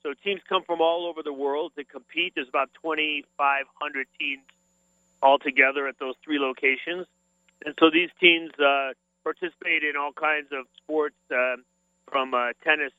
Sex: male